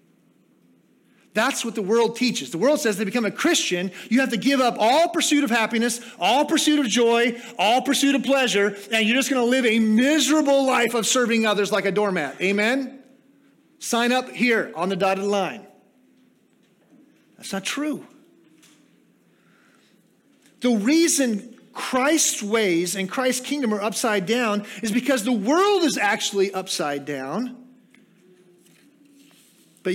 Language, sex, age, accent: English, male, 40-59, American